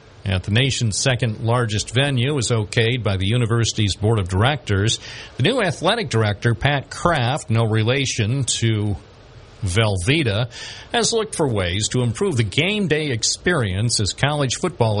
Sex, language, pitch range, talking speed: male, English, 110-135 Hz, 150 wpm